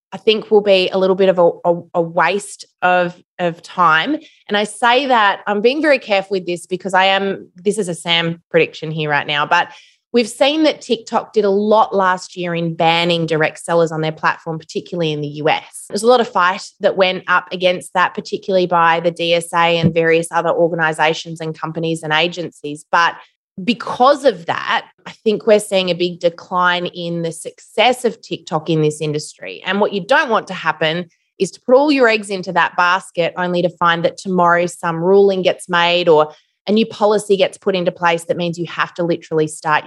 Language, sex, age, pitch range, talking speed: English, female, 20-39, 165-200 Hz, 205 wpm